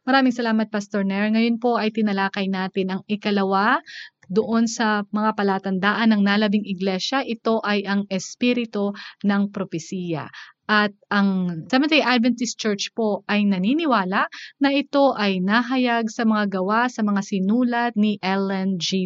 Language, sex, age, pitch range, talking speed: Filipino, female, 20-39, 200-255 Hz, 140 wpm